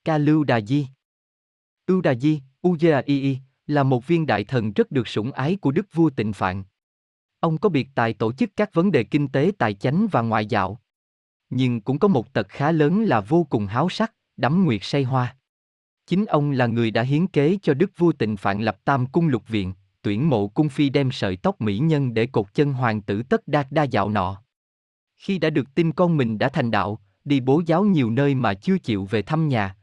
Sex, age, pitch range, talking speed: male, 20-39, 110-155 Hz, 225 wpm